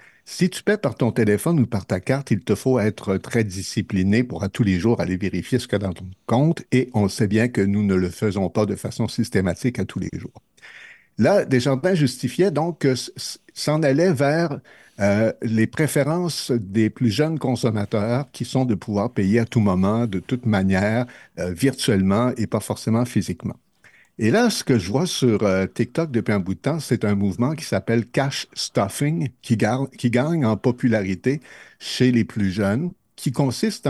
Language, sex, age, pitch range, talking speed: French, male, 60-79, 100-130 Hz, 205 wpm